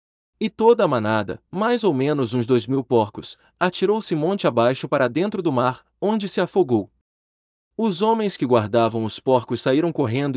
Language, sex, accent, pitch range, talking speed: Portuguese, male, Brazilian, 120-180 Hz, 170 wpm